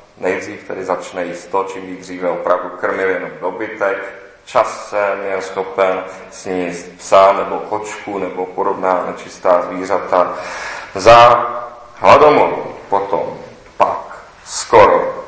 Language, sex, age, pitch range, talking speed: Czech, male, 40-59, 90-135 Hz, 100 wpm